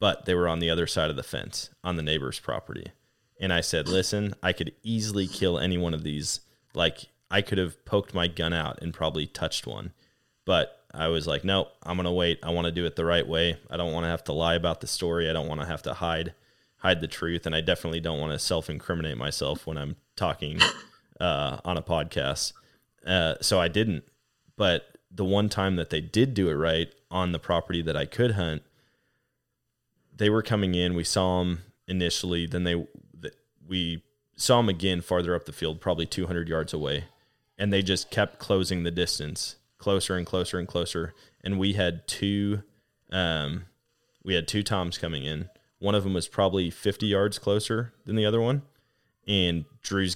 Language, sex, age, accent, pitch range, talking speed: English, male, 20-39, American, 85-100 Hz, 205 wpm